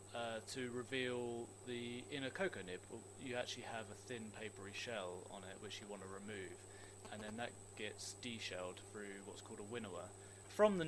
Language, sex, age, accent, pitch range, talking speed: English, male, 20-39, British, 100-130 Hz, 190 wpm